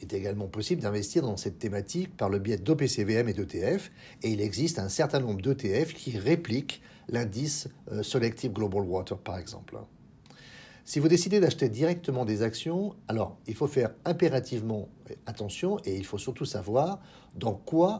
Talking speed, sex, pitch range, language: 165 wpm, male, 105-150 Hz, English